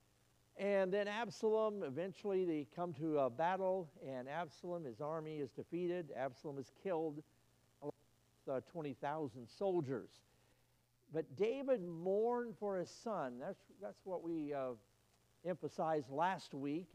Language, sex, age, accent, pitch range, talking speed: English, male, 60-79, American, 140-190 Hz, 125 wpm